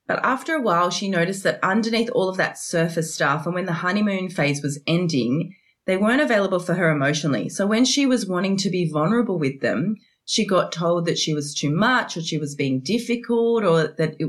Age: 30-49